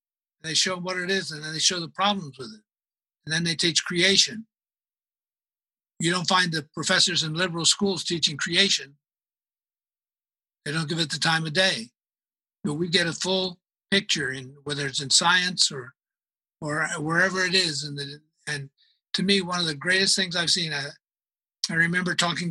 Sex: male